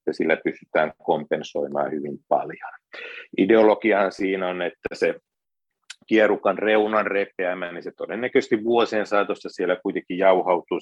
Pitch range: 95-140 Hz